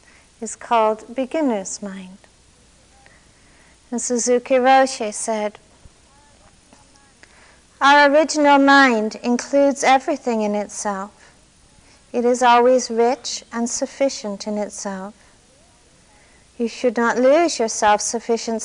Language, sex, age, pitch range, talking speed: English, female, 50-69, 220-275 Hz, 95 wpm